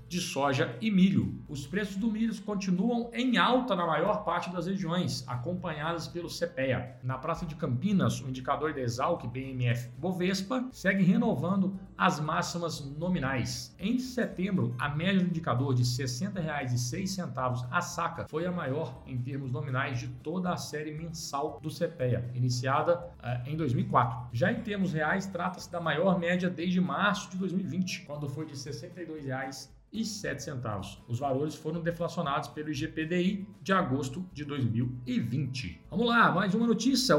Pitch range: 135-190 Hz